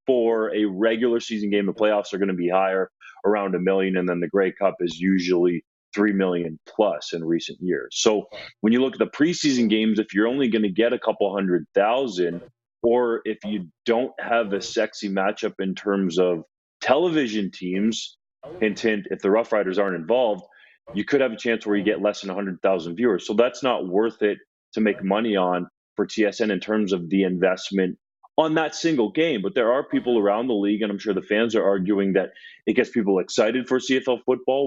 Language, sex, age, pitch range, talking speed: English, male, 30-49, 95-110 Hz, 205 wpm